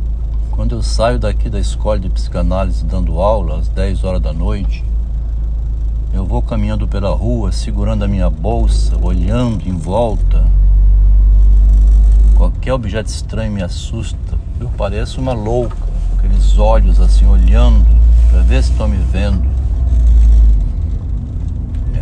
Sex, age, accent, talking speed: male, 60-79, Brazilian, 130 wpm